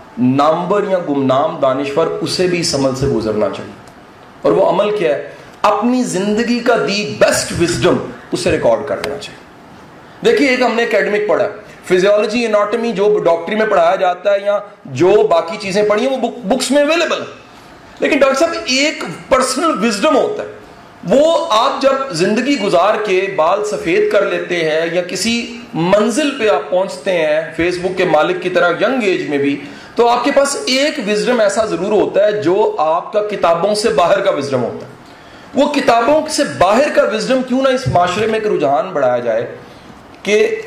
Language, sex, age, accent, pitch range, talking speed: English, male, 40-59, Indian, 180-255 Hz, 150 wpm